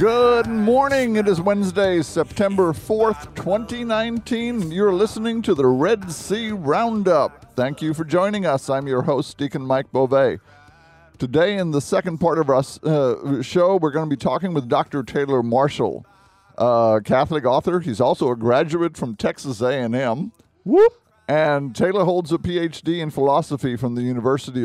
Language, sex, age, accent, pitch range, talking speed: English, male, 50-69, American, 125-175 Hz, 155 wpm